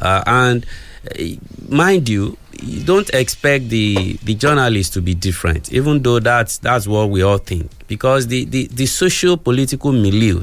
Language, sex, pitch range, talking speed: English, male, 100-145 Hz, 165 wpm